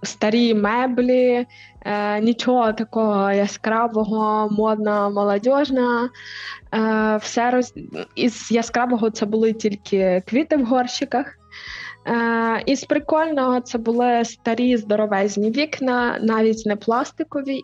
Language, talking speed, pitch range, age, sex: Ukrainian, 100 wpm, 200-240 Hz, 20-39, female